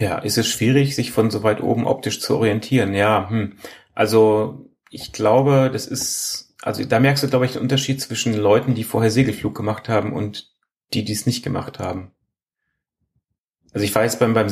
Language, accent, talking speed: German, German, 185 wpm